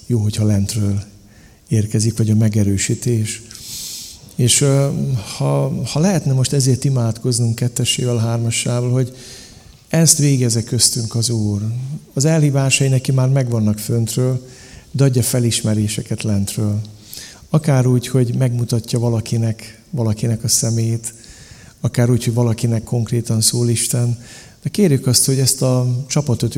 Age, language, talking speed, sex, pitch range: 50-69, Hungarian, 120 wpm, male, 110-135 Hz